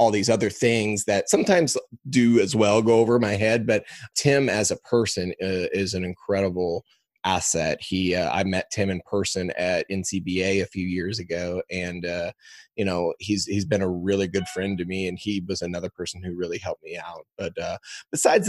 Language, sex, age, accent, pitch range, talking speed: English, male, 20-39, American, 95-115 Hz, 200 wpm